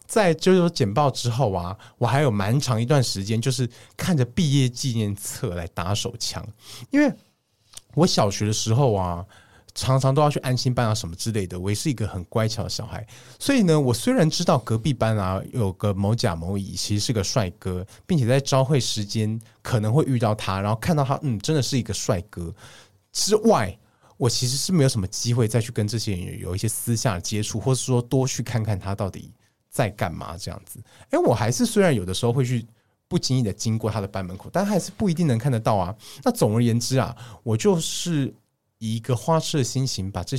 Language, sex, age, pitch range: Chinese, male, 20-39, 100-130 Hz